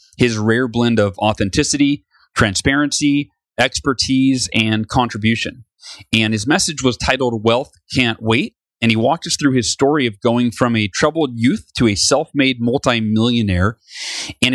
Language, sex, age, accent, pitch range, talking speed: English, male, 30-49, American, 110-130 Hz, 145 wpm